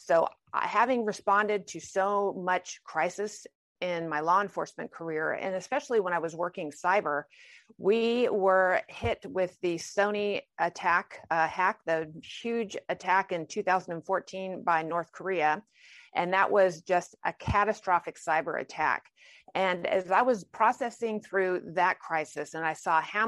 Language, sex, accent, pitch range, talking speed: English, female, American, 175-220 Hz, 145 wpm